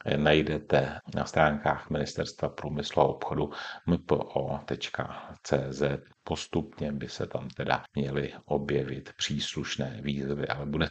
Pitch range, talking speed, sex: 70-80 Hz, 105 wpm, male